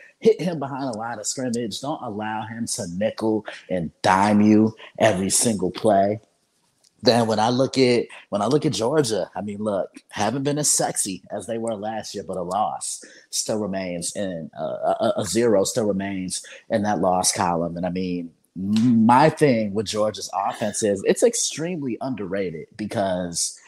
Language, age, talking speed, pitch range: English, 30-49, 175 wpm, 95-130 Hz